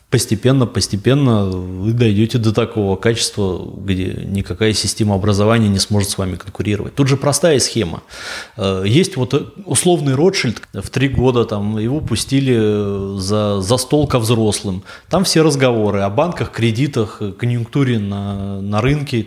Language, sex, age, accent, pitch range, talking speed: Russian, male, 20-39, native, 105-140 Hz, 145 wpm